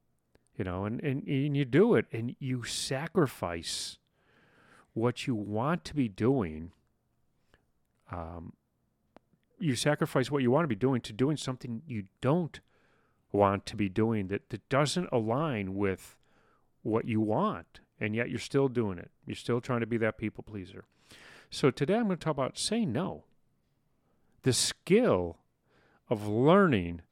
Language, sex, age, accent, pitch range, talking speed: English, male, 40-59, American, 100-130 Hz, 155 wpm